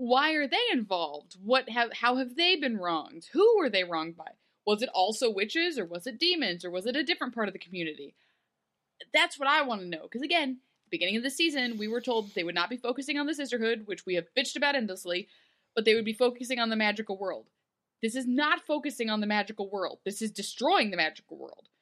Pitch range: 200-280 Hz